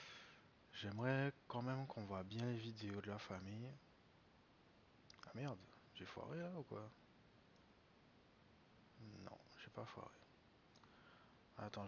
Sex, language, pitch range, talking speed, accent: male, French, 100-125 Hz, 115 wpm, French